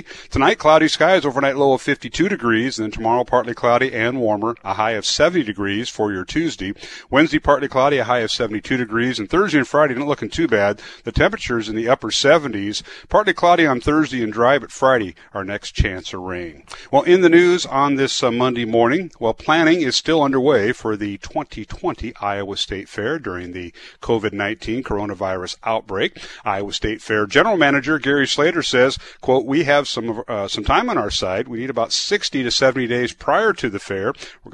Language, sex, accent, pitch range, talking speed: English, male, American, 105-130 Hz, 200 wpm